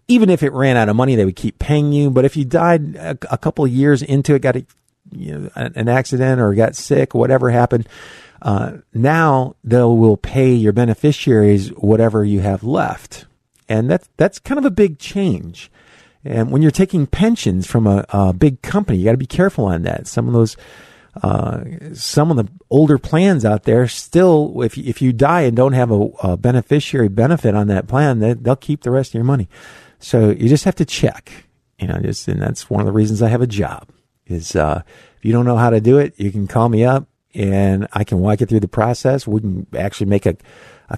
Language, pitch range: English, 105-135 Hz